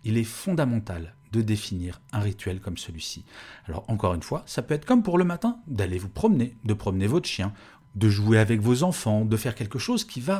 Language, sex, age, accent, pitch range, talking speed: French, male, 40-59, French, 105-145 Hz, 220 wpm